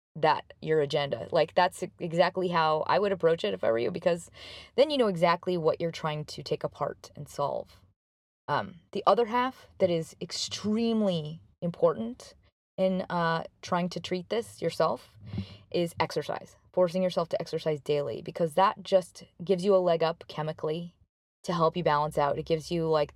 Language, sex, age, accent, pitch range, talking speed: English, female, 20-39, American, 155-195 Hz, 175 wpm